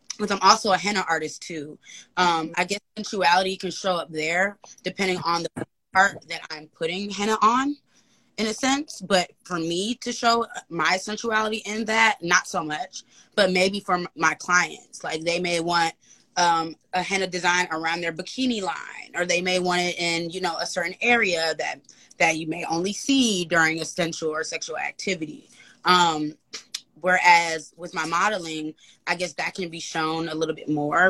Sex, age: female, 20-39